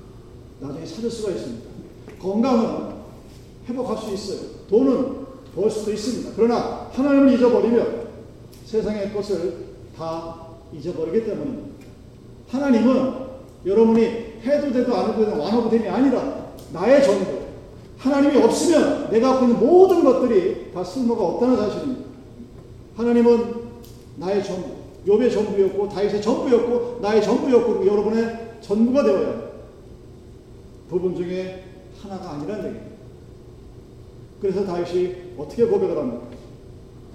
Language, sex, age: Korean, male, 40-59